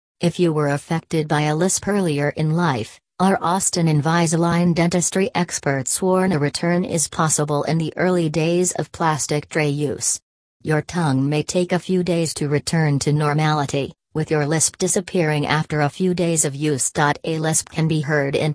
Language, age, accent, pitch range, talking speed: English, 40-59, American, 145-175 Hz, 180 wpm